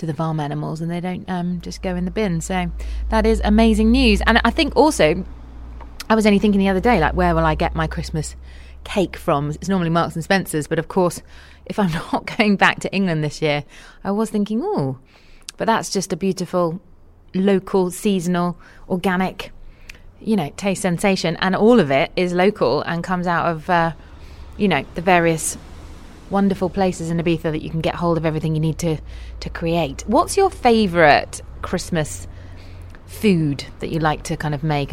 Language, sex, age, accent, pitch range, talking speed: English, female, 20-39, British, 150-195 Hz, 195 wpm